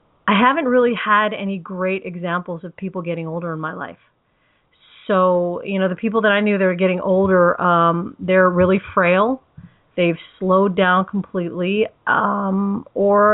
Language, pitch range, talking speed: English, 175-215 Hz, 160 wpm